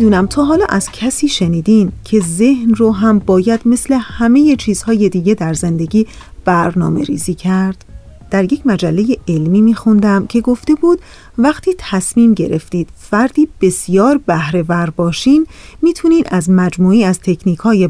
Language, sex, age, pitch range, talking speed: Persian, female, 40-59, 185-265 Hz, 135 wpm